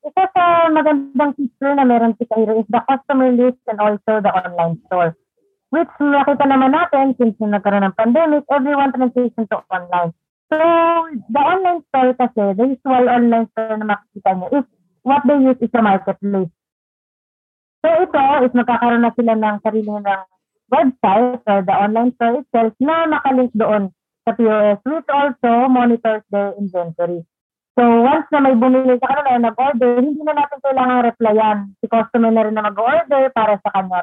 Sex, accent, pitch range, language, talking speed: female, native, 205-275 Hz, Filipino, 170 wpm